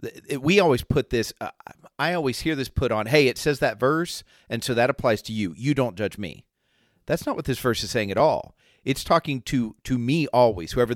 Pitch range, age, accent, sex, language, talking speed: 110-140 Hz, 40-59, American, male, English, 230 wpm